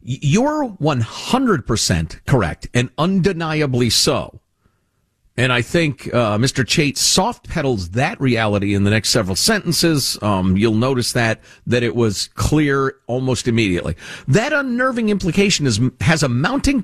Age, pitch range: 50-69, 115-180 Hz